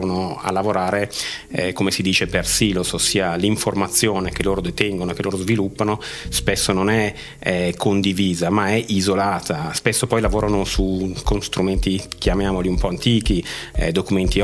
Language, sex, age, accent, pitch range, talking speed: Italian, male, 30-49, native, 90-105 Hz, 150 wpm